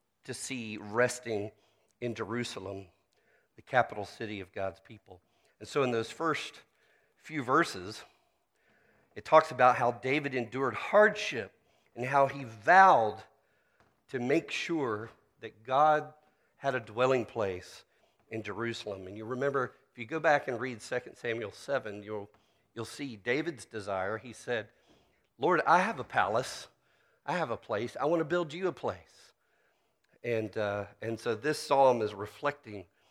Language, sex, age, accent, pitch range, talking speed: English, male, 50-69, American, 110-140 Hz, 150 wpm